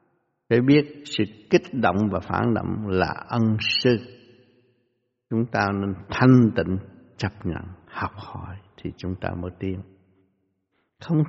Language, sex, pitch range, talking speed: Vietnamese, male, 95-120 Hz, 140 wpm